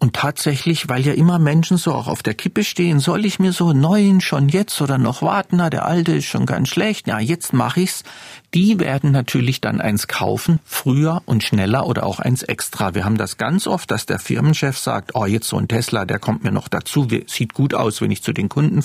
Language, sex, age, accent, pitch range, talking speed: German, male, 50-69, German, 115-170 Hz, 235 wpm